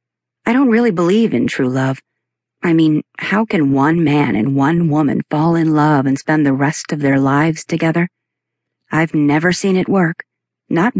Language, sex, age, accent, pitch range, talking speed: English, female, 40-59, American, 140-170 Hz, 180 wpm